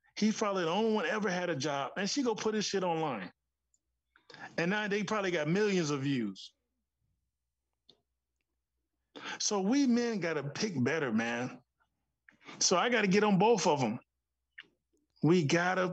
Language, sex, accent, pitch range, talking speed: English, male, American, 145-210 Hz, 155 wpm